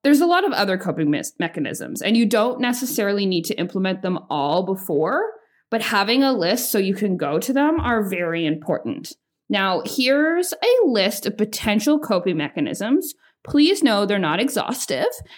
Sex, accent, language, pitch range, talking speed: female, American, English, 190-280 Hz, 170 wpm